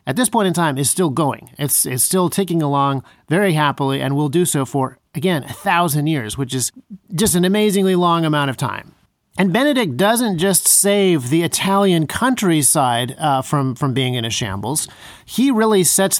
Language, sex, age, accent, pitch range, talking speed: English, male, 40-59, American, 140-180 Hz, 190 wpm